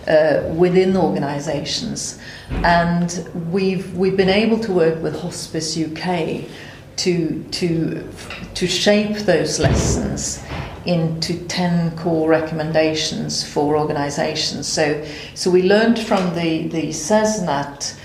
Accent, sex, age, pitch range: British, female, 40-59, 155-180 Hz